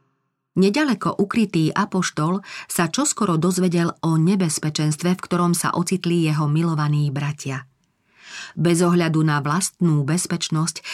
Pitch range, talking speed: 155-190 Hz, 110 wpm